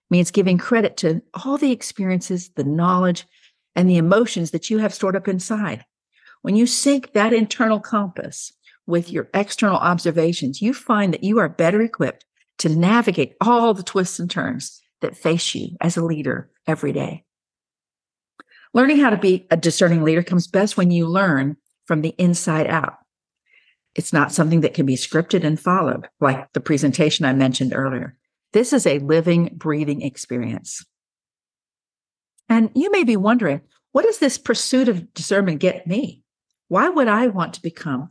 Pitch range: 160-215 Hz